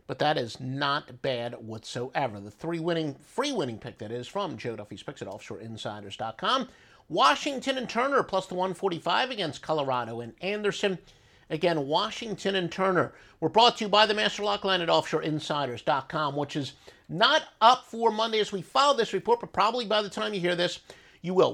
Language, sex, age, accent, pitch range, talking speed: English, male, 50-69, American, 140-210 Hz, 185 wpm